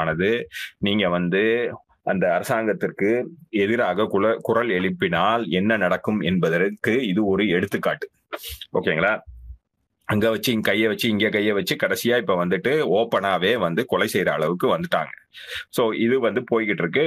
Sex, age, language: male, 30-49, Tamil